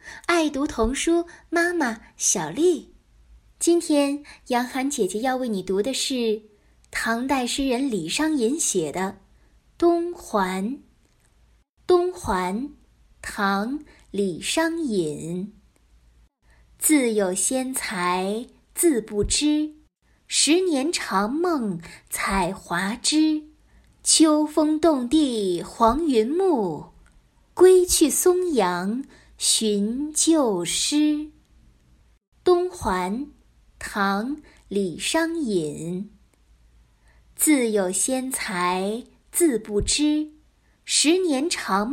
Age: 10-29